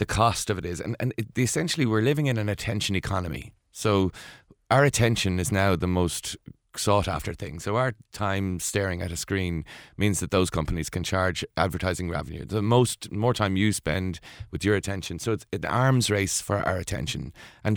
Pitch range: 90-110 Hz